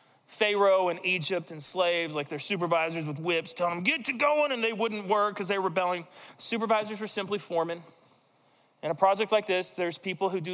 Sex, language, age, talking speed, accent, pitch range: male, English, 20-39, 205 wpm, American, 160-200 Hz